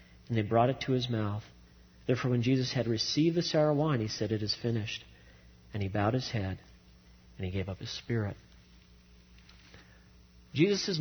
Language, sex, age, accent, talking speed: English, male, 40-59, American, 175 wpm